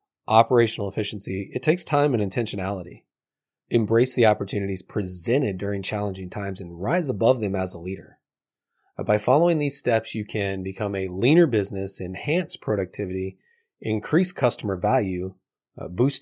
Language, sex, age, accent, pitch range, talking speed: English, male, 30-49, American, 100-130 Hz, 135 wpm